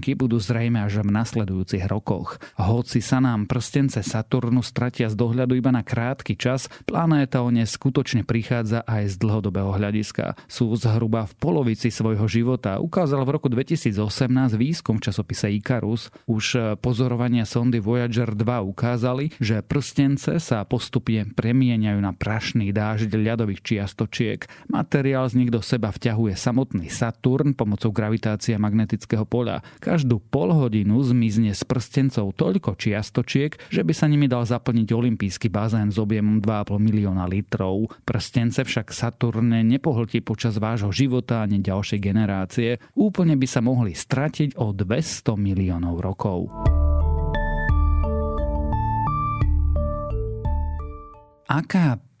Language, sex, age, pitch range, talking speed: Slovak, male, 40-59, 105-125 Hz, 125 wpm